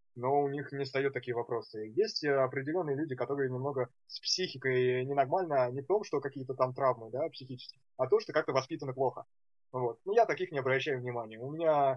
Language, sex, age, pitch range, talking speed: Russian, male, 20-39, 125-145 Hz, 190 wpm